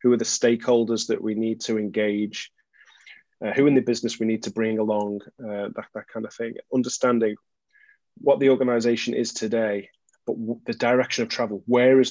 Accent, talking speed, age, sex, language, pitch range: British, 195 wpm, 30-49, male, English, 110-125 Hz